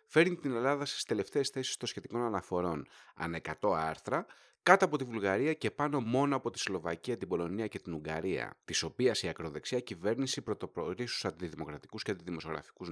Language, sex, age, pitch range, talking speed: Greek, male, 30-49, 90-130 Hz, 165 wpm